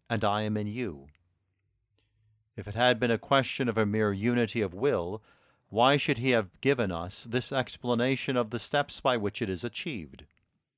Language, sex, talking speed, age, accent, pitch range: English, male, 185 wpm, 50-69, American, 105-130 Hz